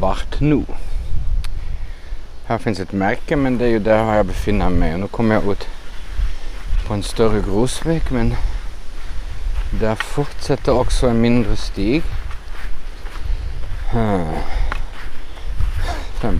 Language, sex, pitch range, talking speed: Swedish, male, 80-110 Hz, 110 wpm